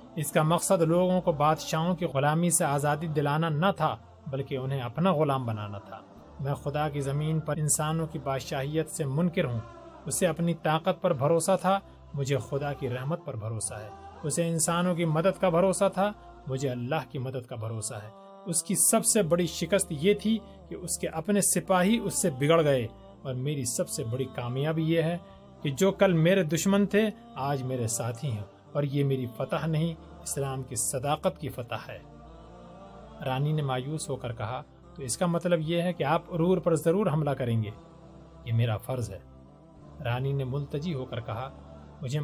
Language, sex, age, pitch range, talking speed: Urdu, male, 30-49, 130-170 Hz, 185 wpm